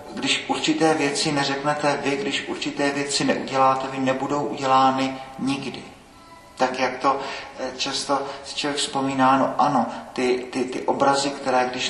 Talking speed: 135 wpm